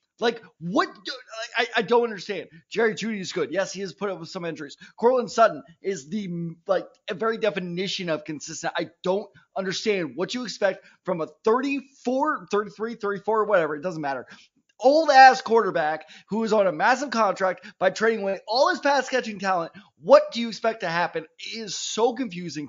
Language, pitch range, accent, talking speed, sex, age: English, 180-255 Hz, American, 190 wpm, male, 20-39